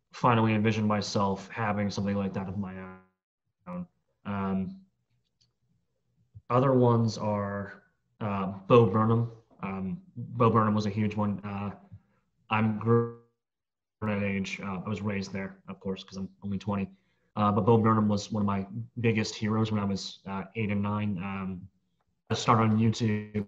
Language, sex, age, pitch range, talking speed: English, male, 30-49, 95-110 Hz, 160 wpm